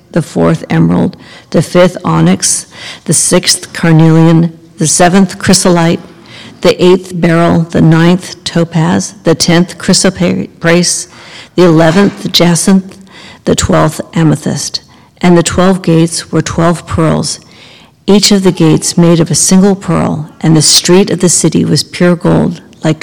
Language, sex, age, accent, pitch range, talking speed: English, female, 50-69, American, 165-185 Hz, 140 wpm